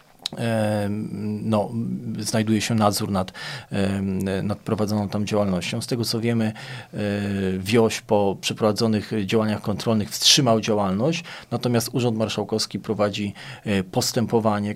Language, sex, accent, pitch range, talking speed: Polish, male, native, 105-120 Hz, 100 wpm